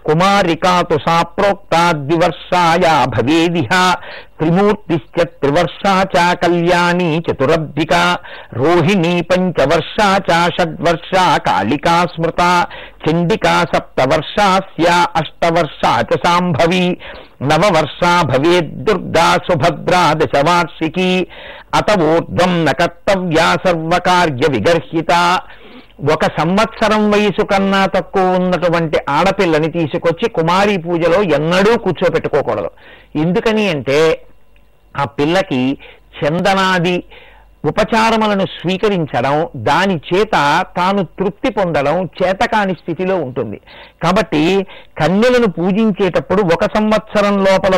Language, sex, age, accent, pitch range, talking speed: Telugu, male, 60-79, native, 165-195 Hz, 75 wpm